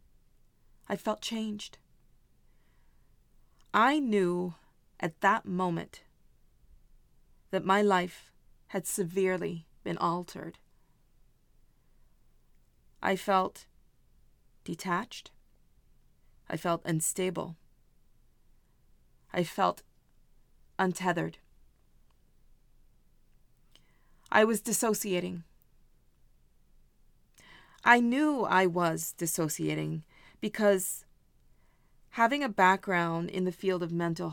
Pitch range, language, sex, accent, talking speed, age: 170-205 Hz, English, female, American, 70 wpm, 30-49